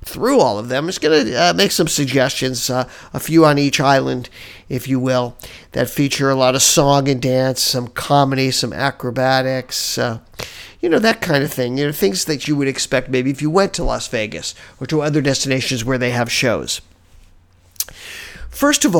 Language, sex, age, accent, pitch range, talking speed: English, male, 50-69, American, 130-180 Hz, 200 wpm